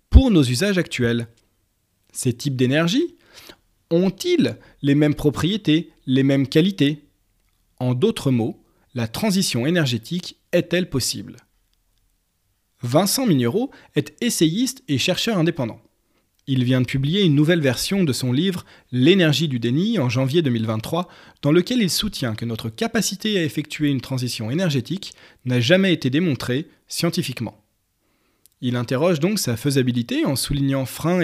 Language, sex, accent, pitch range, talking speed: French, male, French, 120-175 Hz, 140 wpm